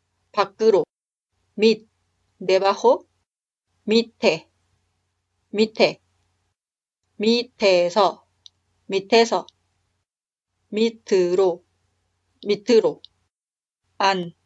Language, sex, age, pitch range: Korean, female, 30-49, 175-235 Hz